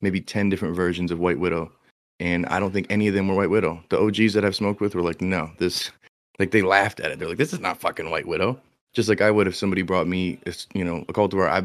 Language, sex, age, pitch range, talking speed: English, male, 30-49, 90-100 Hz, 280 wpm